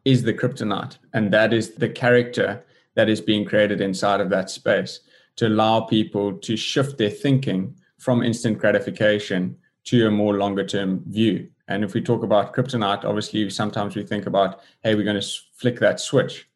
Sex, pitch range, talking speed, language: male, 100-115 Hz, 180 wpm, English